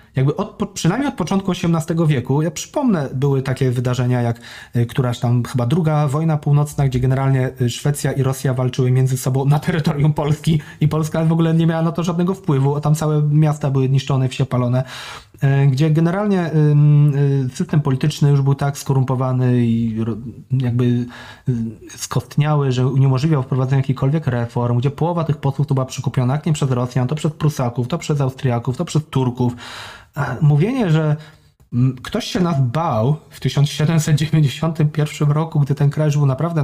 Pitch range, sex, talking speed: 125-150 Hz, male, 155 wpm